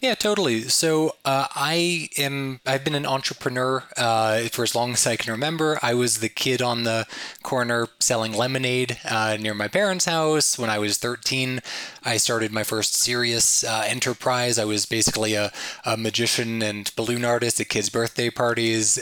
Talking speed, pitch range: 175 wpm, 110-135 Hz